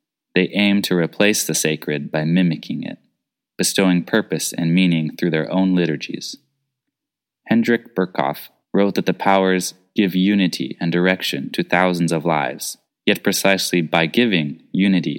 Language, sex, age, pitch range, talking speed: English, male, 20-39, 85-105 Hz, 140 wpm